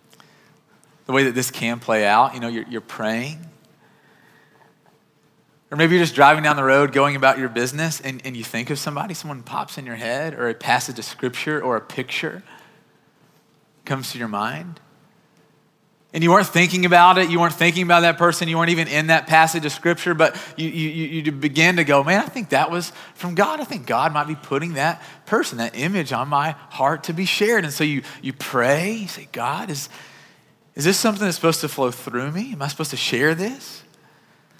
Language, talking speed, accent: English, 210 wpm, American